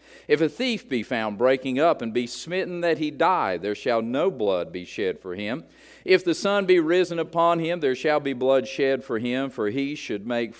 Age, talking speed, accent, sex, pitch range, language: 50-69, 220 wpm, American, male, 115-155 Hz, English